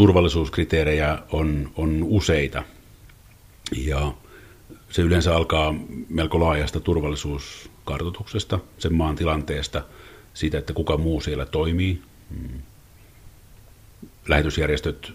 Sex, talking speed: male, 85 wpm